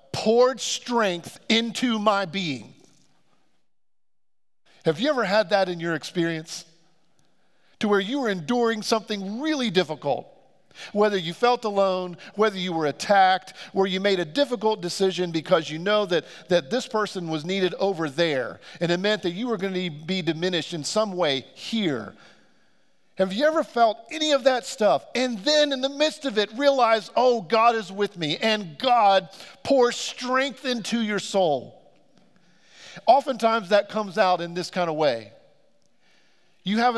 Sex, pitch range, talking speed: male, 175-235 Hz, 160 wpm